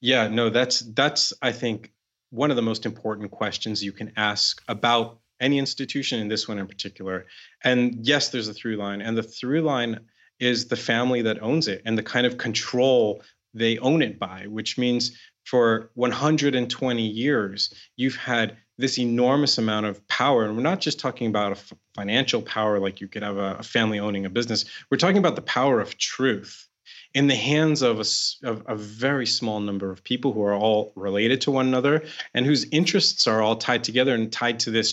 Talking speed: 200 wpm